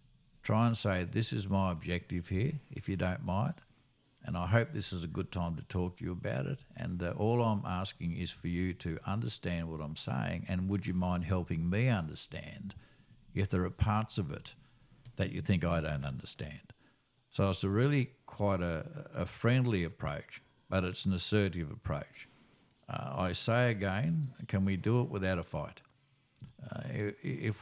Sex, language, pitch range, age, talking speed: male, English, 90-125 Hz, 60-79, 185 wpm